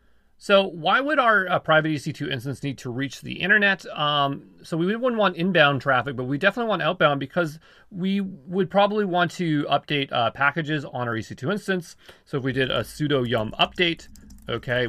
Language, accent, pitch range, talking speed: English, American, 125-175 Hz, 190 wpm